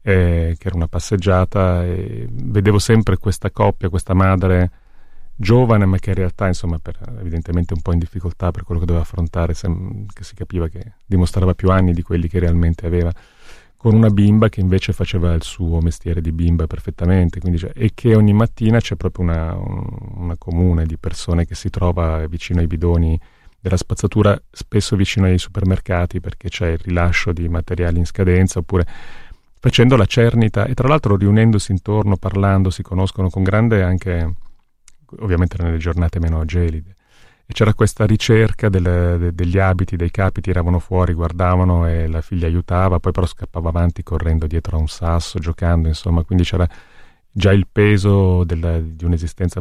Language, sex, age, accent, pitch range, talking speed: Italian, male, 30-49, native, 85-100 Hz, 170 wpm